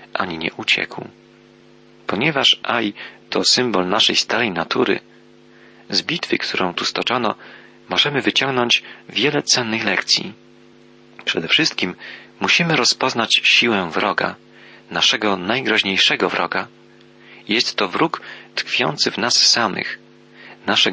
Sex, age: male, 40-59